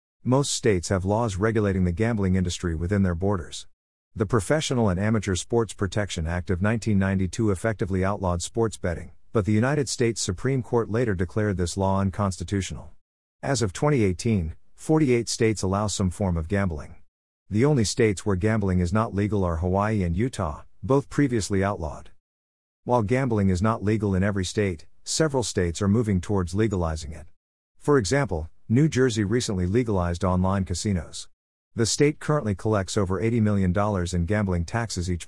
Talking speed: 160 wpm